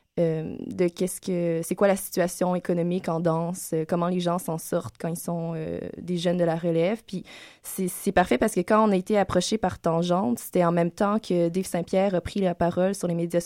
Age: 20-39